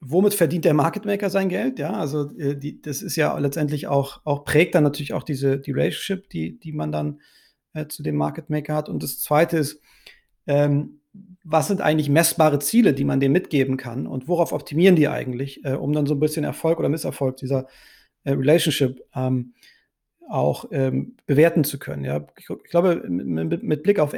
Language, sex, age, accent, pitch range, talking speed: German, male, 40-59, German, 140-165 Hz, 190 wpm